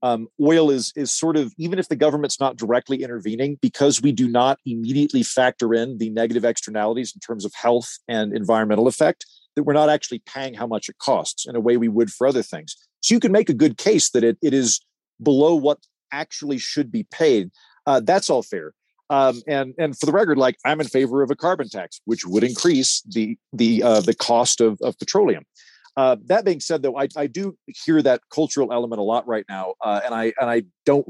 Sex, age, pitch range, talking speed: male, 40-59, 115-150 Hz, 220 wpm